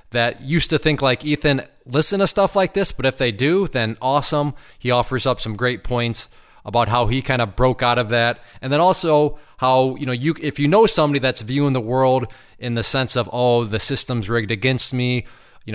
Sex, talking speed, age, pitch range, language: male, 220 wpm, 20-39, 120-145 Hz, English